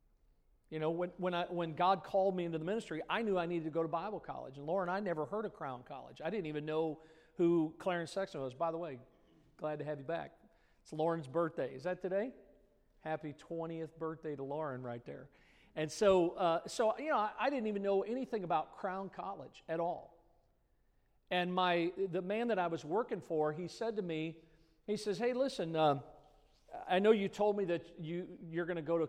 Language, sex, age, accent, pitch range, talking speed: English, male, 50-69, American, 155-190 Hz, 215 wpm